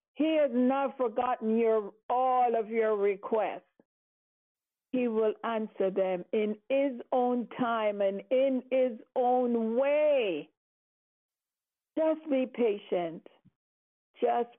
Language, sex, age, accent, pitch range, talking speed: English, female, 50-69, American, 230-280 Hz, 105 wpm